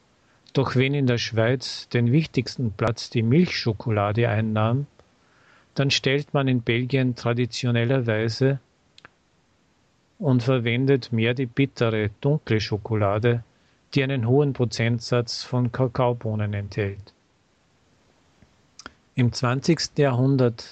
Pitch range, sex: 115-130 Hz, male